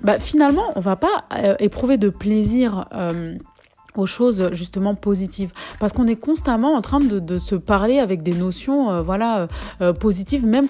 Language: French